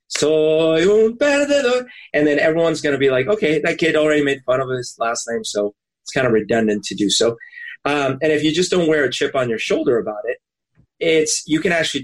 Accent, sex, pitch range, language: American, male, 120-195 Hz, English